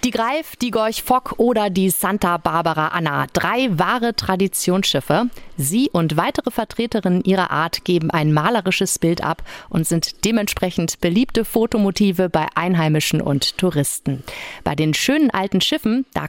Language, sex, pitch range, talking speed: German, female, 165-225 Hz, 145 wpm